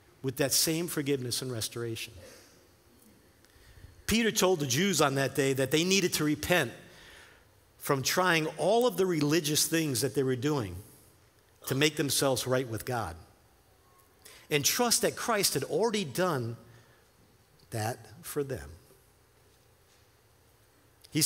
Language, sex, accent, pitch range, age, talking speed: English, male, American, 120-185 Hz, 50-69, 130 wpm